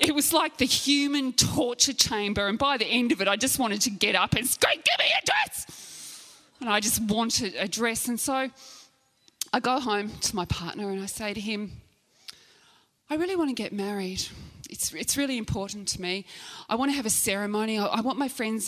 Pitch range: 195-275 Hz